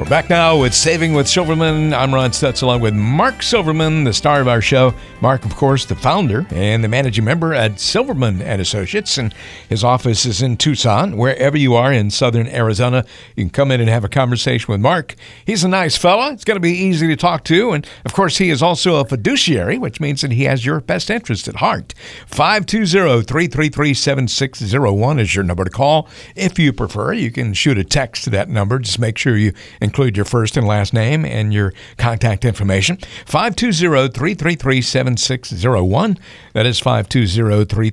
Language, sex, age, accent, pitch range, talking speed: English, male, 50-69, American, 110-155 Hz, 190 wpm